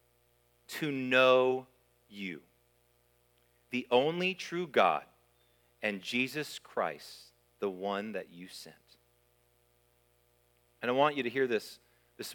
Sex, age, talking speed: male, 30-49, 110 wpm